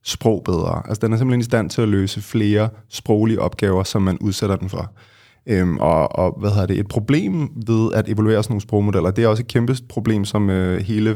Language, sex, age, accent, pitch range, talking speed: Danish, male, 20-39, native, 100-115 Hz, 225 wpm